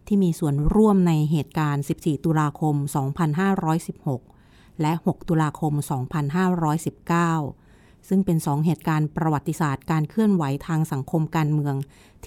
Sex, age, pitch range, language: female, 30-49, 145-175 Hz, Thai